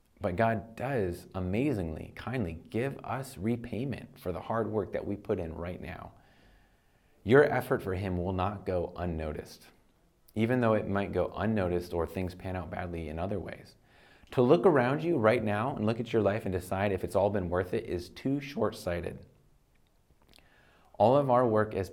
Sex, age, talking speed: male, 30-49, 185 wpm